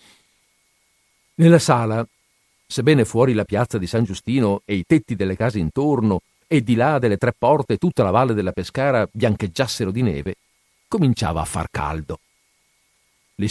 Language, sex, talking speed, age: Italian, male, 150 wpm, 50-69